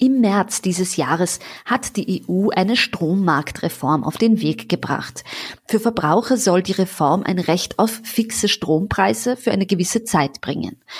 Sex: female